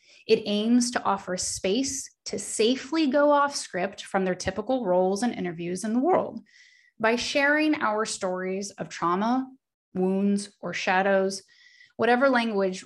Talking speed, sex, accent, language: 140 wpm, female, American, English